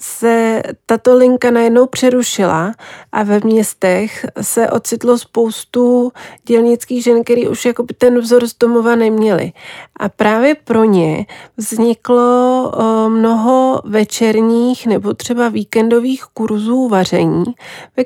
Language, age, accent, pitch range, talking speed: Czech, 30-49, native, 210-245 Hz, 110 wpm